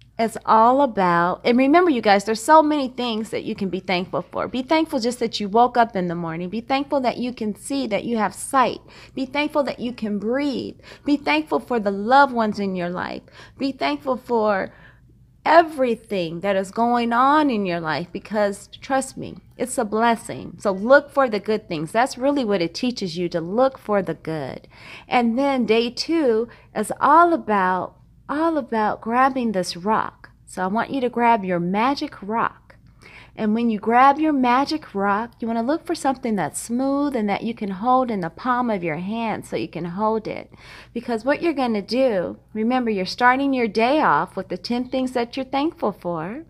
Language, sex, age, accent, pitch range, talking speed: English, female, 30-49, American, 200-265 Hz, 205 wpm